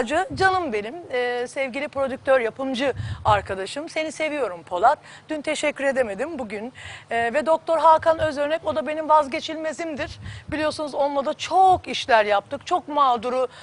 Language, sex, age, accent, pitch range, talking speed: Turkish, female, 40-59, native, 240-310 Hz, 135 wpm